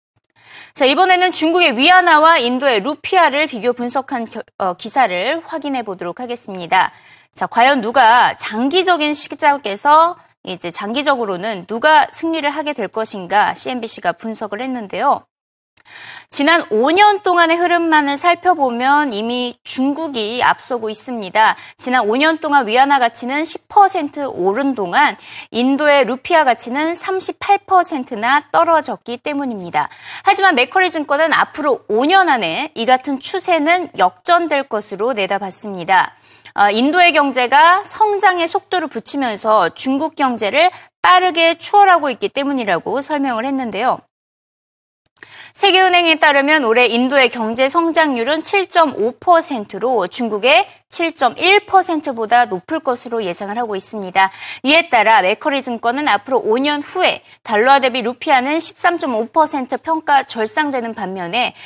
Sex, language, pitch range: female, Korean, 225-330 Hz